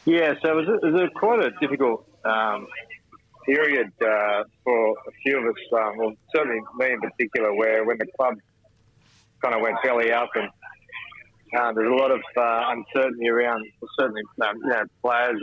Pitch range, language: 110-125 Hz, English